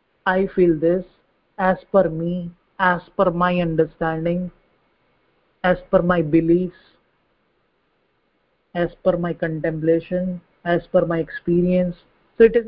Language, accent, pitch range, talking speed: English, Indian, 170-195 Hz, 120 wpm